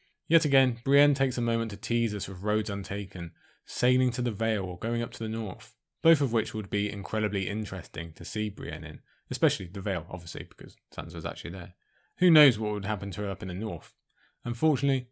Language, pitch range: English, 95-125 Hz